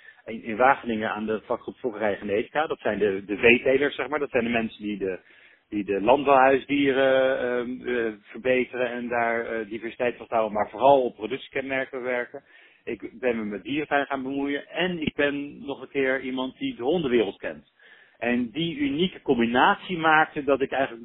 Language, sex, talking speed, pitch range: Dutch, male, 180 wpm, 110-135 Hz